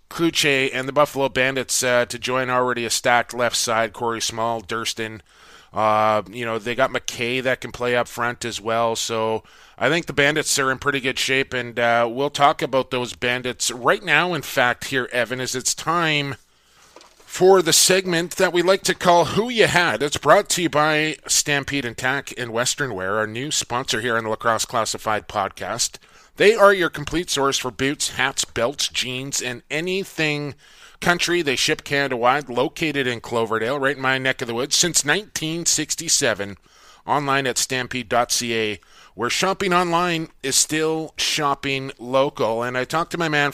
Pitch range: 120-155 Hz